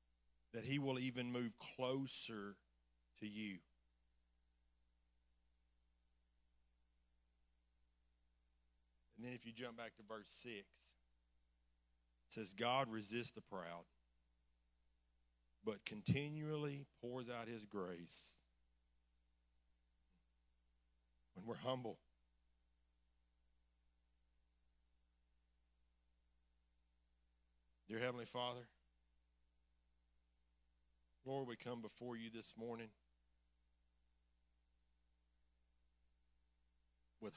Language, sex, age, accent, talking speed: English, male, 50-69, American, 70 wpm